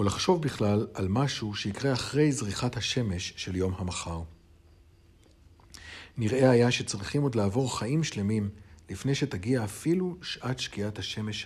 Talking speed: 130 wpm